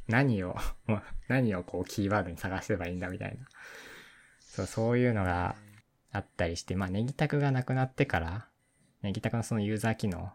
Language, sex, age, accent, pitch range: Japanese, male, 20-39, native, 90-120 Hz